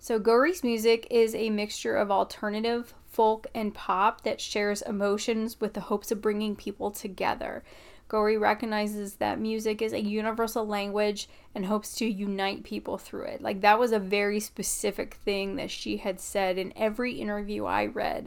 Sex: female